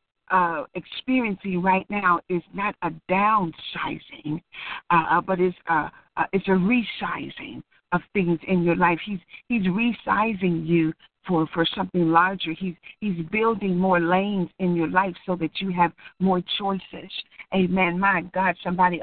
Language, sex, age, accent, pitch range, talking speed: English, female, 60-79, American, 175-195 Hz, 150 wpm